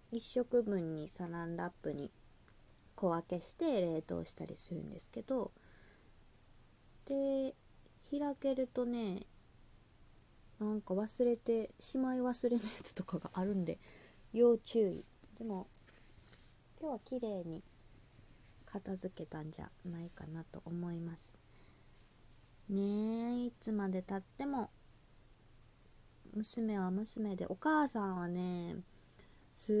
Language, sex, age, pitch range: Japanese, female, 20-39, 170-245 Hz